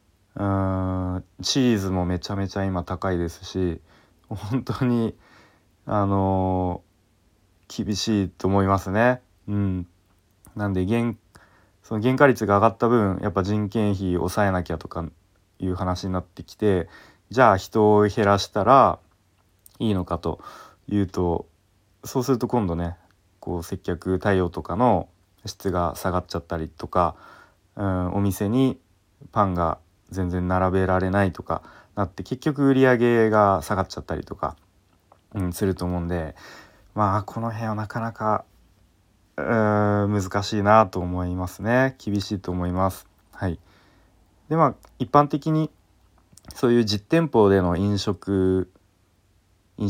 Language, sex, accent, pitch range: Japanese, male, native, 90-105 Hz